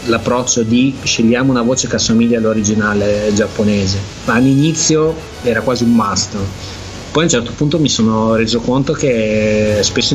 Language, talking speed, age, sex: Italian, 150 wpm, 30-49, male